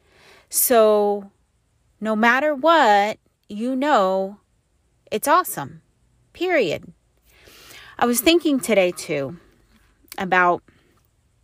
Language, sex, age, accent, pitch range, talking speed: English, female, 30-49, American, 160-225 Hz, 80 wpm